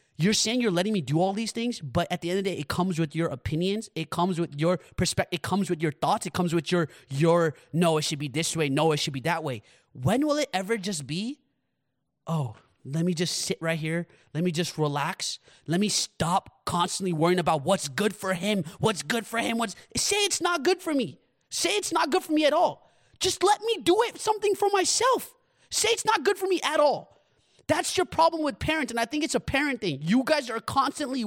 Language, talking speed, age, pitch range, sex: English, 240 wpm, 30-49, 165-265 Hz, male